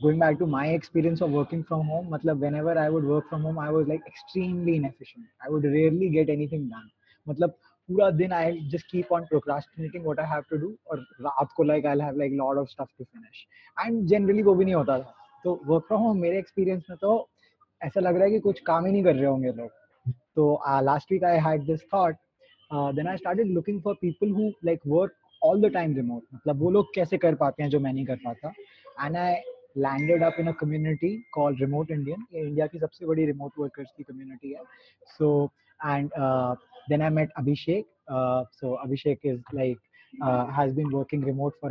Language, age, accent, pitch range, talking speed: Hindi, 20-39, native, 140-175 Hz, 125 wpm